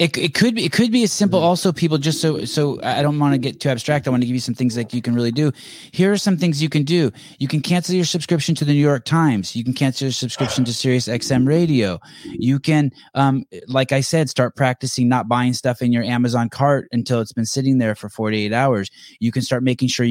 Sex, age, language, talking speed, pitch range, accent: male, 20-39, English, 265 wpm, 110-140 Hz, American